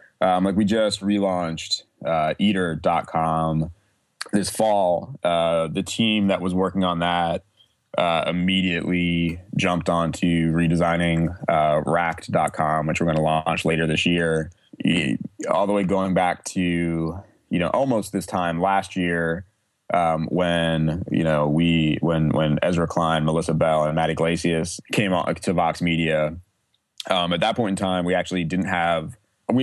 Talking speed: 150 wpm